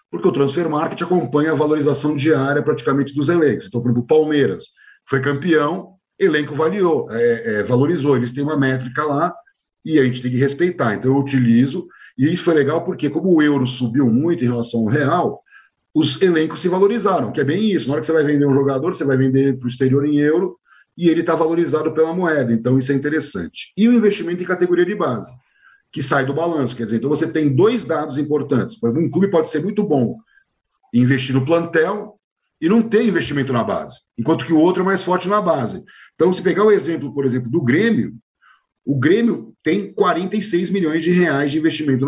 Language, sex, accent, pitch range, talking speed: Portuguese, male, Brazilian, 135-180 Hz, 210 wpm